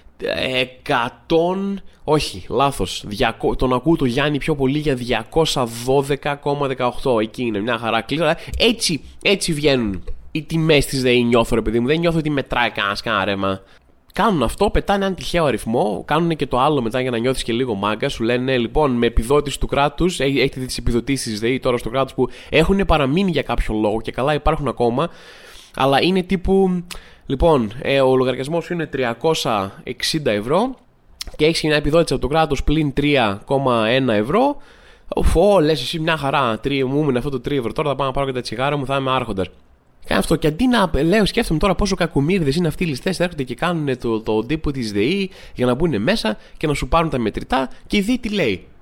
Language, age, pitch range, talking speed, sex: Greek, 20-39, 125-165 Hz, 190 wpm, male